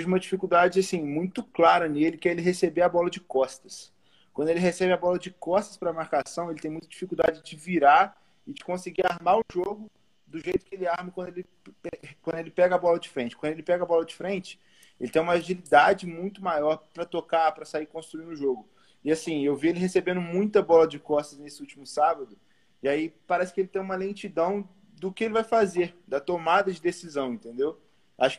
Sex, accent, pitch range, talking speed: male, Brazilian, 145-185 Hz, 215 wpm